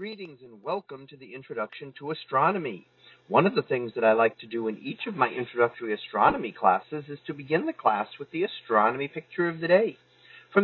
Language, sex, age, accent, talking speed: English, male, 40-59, American, 210 wpm